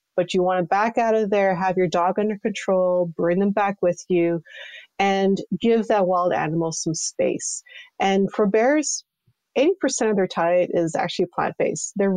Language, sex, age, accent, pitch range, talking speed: English, female, 30-49, American, 170-210 Hz, 180 wpm